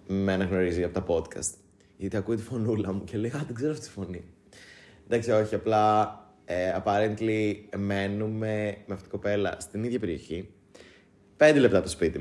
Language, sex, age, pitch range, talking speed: Greek, male, 20-39, 95-120 Hz, 170 wpm